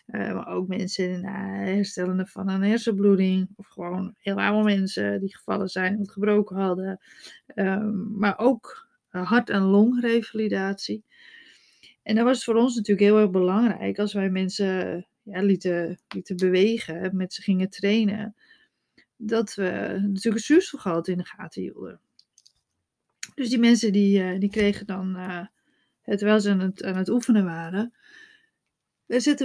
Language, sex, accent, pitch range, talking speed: Dutch, female, Dutch, 185-225 Hz, 150 wpm